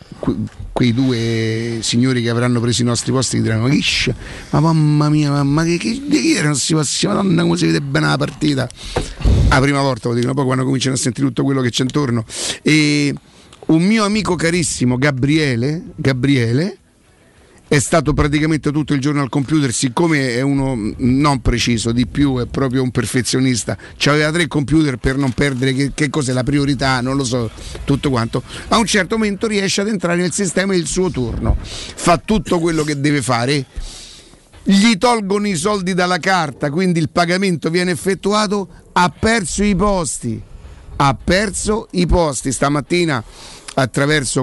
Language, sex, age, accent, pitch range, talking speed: Italian, male, 50-69, native, 130-170 Hz, 165 wpm